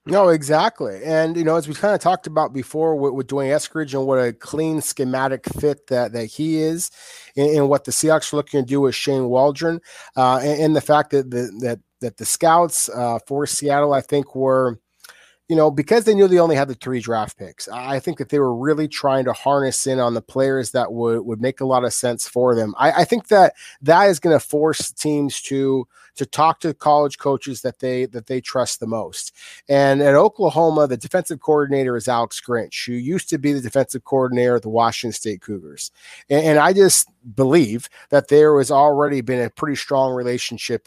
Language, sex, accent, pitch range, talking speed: English, male, American, 125-155 Hz, 220 wpm